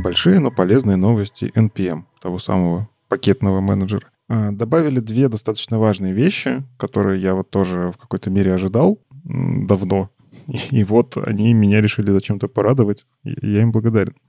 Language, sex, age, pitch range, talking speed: Russian, male, 20-39, 100-130 Hz, 140 wpm